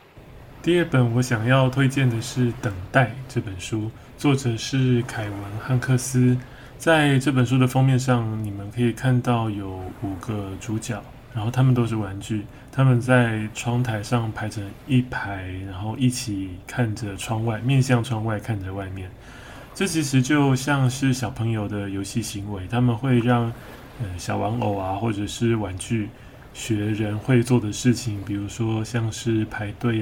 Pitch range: 105-125 Hz